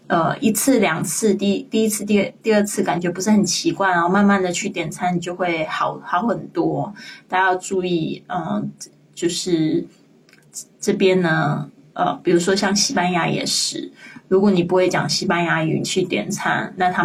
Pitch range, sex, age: 175-200 Hz, female, 20-39